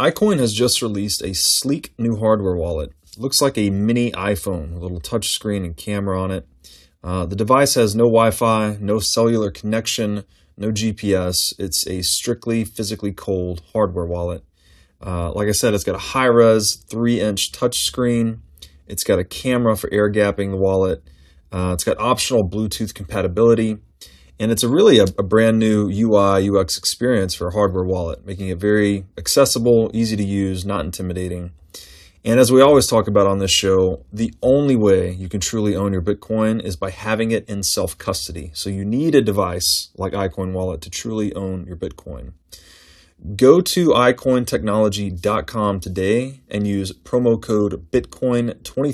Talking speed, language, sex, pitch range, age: 170 wpm, English, male, 90-110 Hz, 30-49